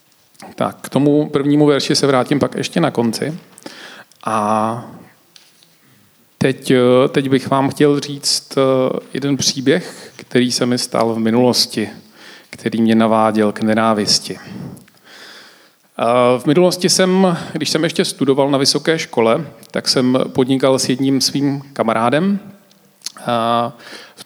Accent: native